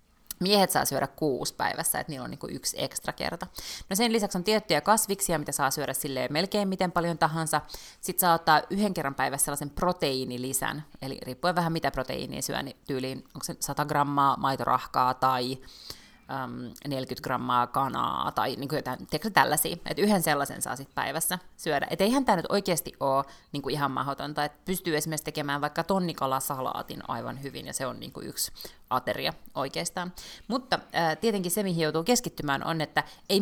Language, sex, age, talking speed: Finnish, female, 30-49, 170 wpm